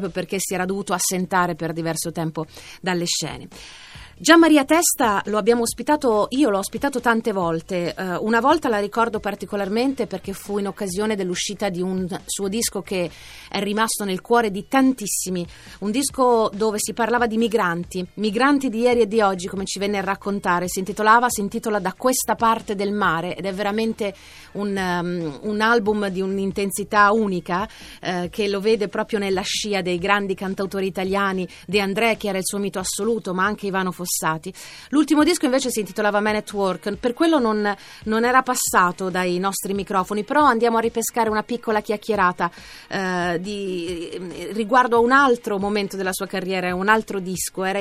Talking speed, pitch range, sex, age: 180 wpm, 190-230 Hz, female, 30-49